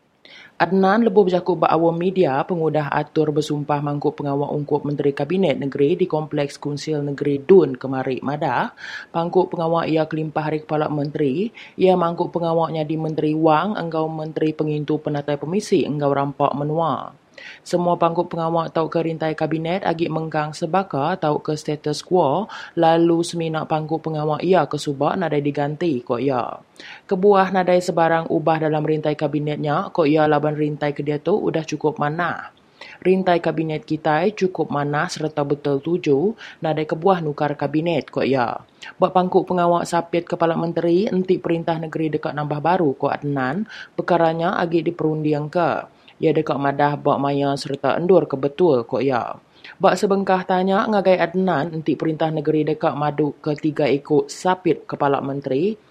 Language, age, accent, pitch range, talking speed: English, 20-39, Indonesian, 150-175 Hz, 150 wpm